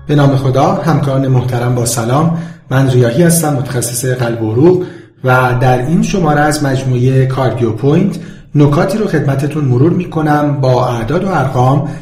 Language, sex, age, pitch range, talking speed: Persian, male, 40-59, 125-170 Hz, 155 wpm